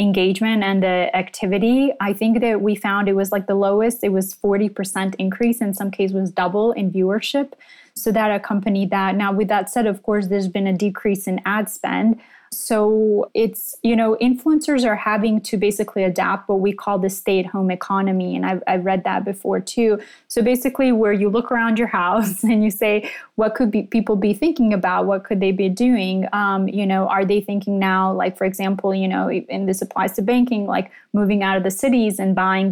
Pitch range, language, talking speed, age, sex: 190-225 Hz, English, 215 wpm, 20-39, female